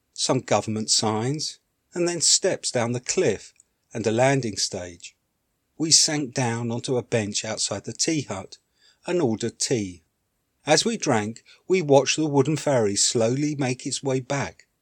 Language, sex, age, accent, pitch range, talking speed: English, male, 50-69, British, 105-135 Hz, 160 wpm